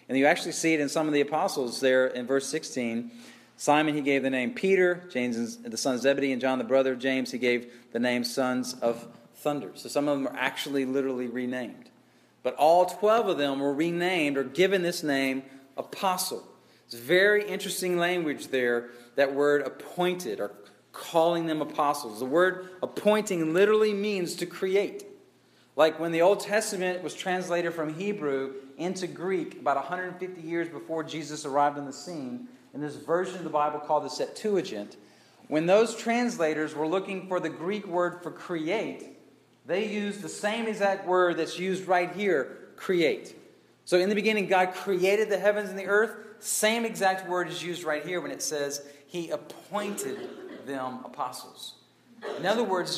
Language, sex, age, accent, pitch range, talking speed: English, male, 40-59, American, 140-195 Hz, 175 wpm